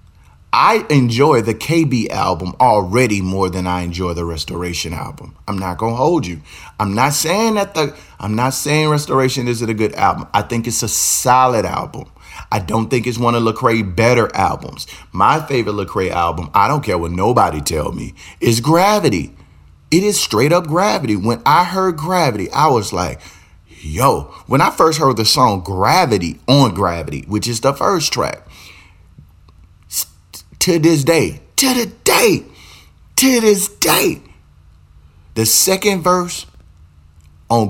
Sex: male